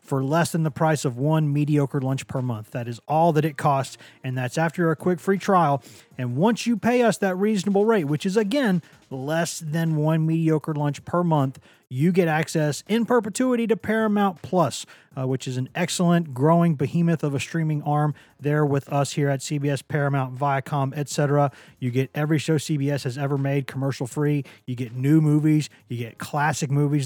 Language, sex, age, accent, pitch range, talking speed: English, male, 30-49, American, 135-170 Hz, 195 wpm